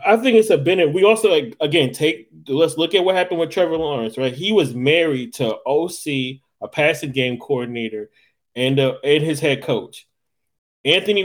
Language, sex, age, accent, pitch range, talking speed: English, male, 20-39, American, 135-175 Hz, 185 wpm